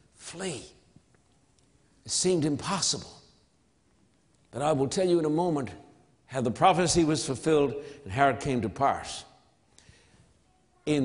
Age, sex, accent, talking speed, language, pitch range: 60-79, male, American, 130 wpm, English, 135-170 Hz